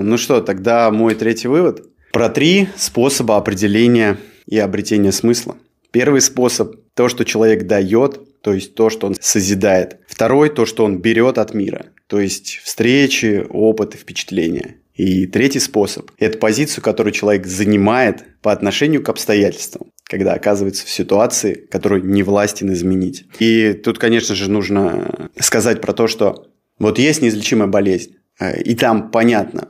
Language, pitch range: Russian, 100-120 Hz